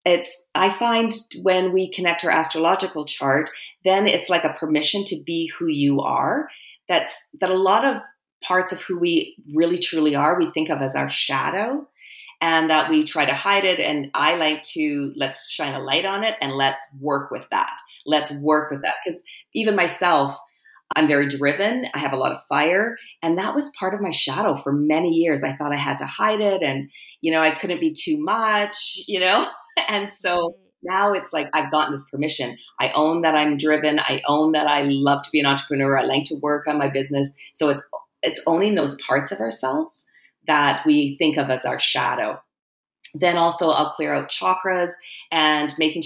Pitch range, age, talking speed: 140-190 Hz, 40-59, 200 wpm